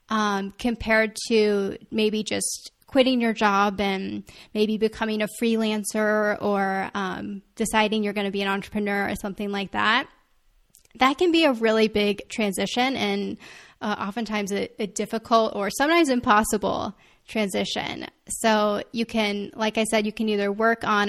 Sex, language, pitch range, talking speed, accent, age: female, English, 200-225 Hz, 155 wpm, American, 10-29